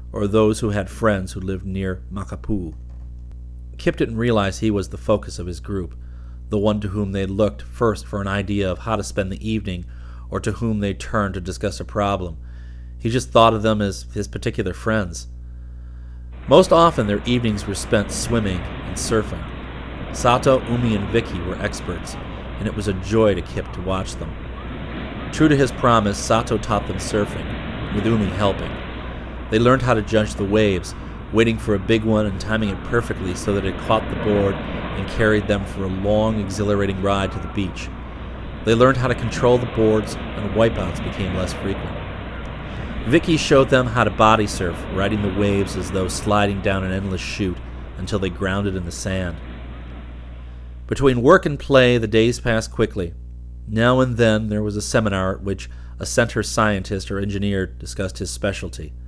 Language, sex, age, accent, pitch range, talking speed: English, male, 40-59, American, 90-110 Hz, 185 wpm